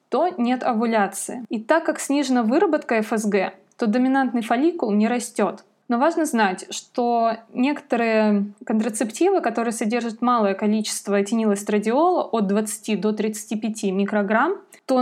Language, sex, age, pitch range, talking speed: Russian, female, 20-39, 215-280 Hz, 125 wpm